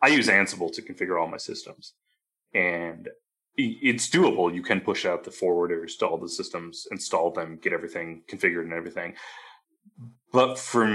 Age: 20-39